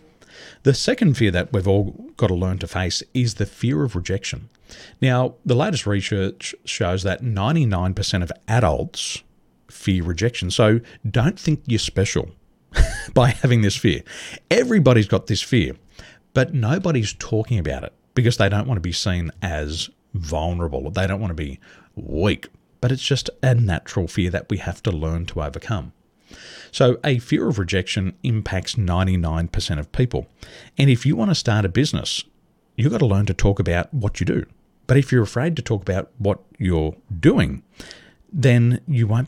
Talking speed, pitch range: 175 wpm, 90-125 Hz